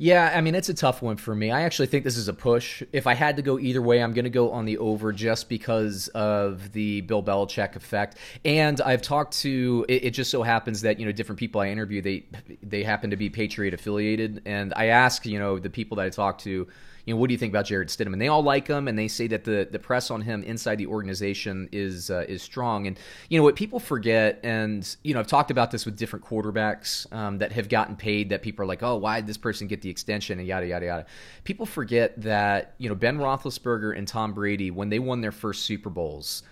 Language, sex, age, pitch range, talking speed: English, male, 30-49, 100-120 Hz, 250 wpm